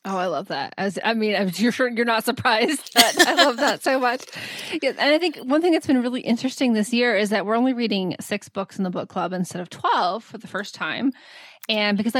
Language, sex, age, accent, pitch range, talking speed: English, female, 20-39, American, 200-250 Hz, 230 wpm